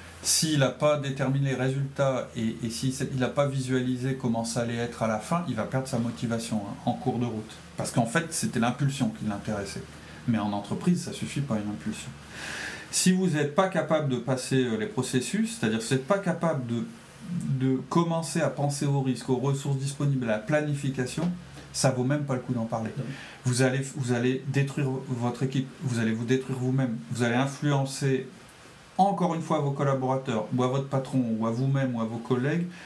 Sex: male